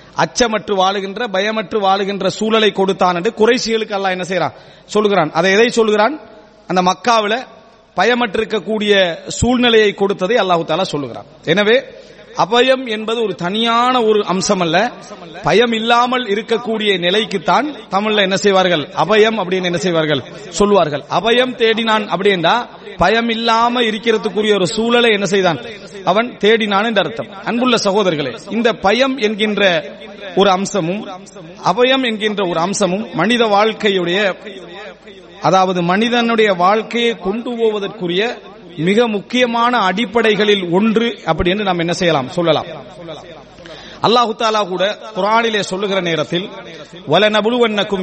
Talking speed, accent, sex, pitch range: 115 wpm, native, male, 185-225 Hz